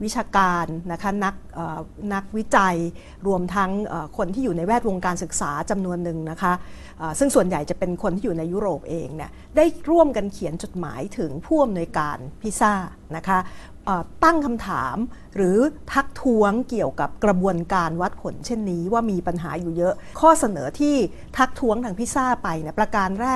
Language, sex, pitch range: Thai, female, 180-240 Hz